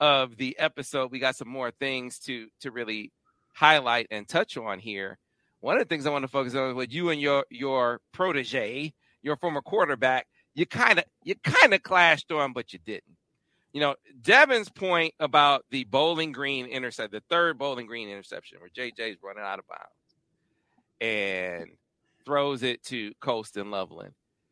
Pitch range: 130-170 Hz